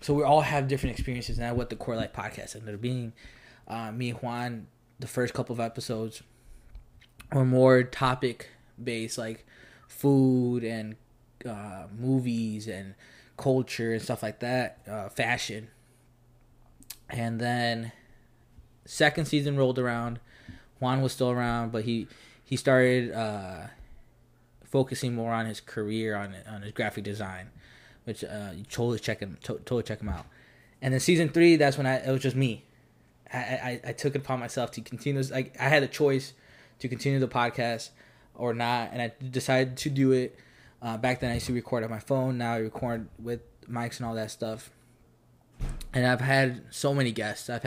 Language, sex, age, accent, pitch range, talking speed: English, male, 20-39, American, 110-130 Hz, 175 wpm